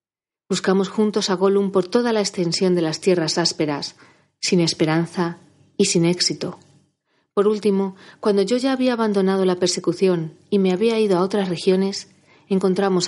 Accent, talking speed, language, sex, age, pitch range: Spanish, 155 wpm, Spanish, female, 40-59, 165-200 Hz